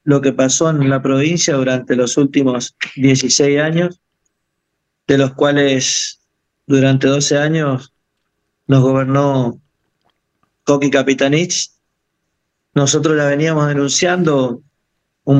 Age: 40-59